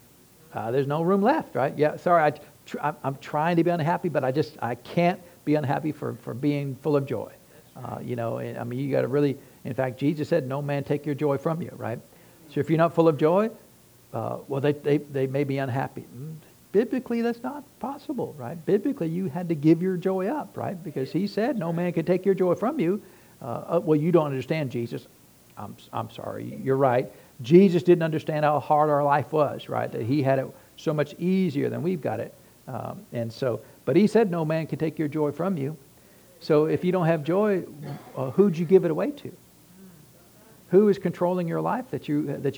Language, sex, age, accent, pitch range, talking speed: English, male, 60-79, American, 140-175 Hz, 220 wpm